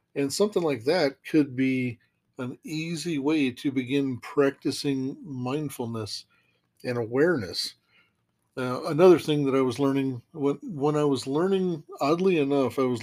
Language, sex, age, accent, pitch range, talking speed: English, male, 50-69, American, 125-150 Hz, 140 wpm